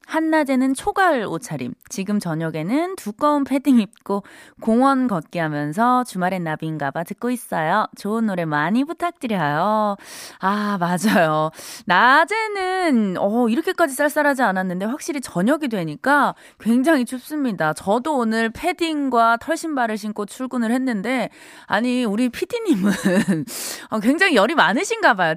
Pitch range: 200-315 Hz